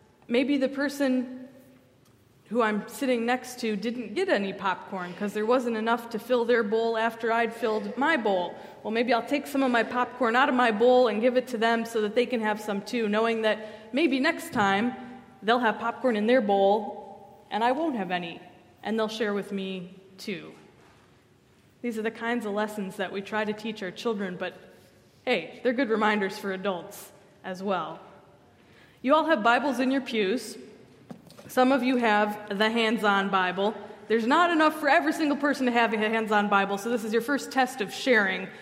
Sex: female